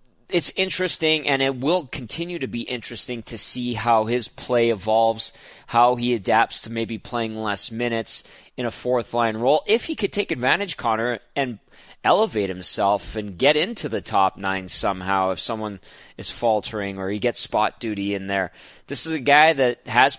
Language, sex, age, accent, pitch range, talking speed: English, male, 20-39, American, 105-135 Hz, 180 wpm